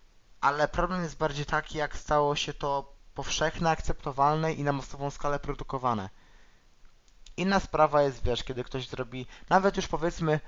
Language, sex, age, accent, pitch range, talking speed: Polish, male, 20-39, native, 125-145 Hz, 150 wpm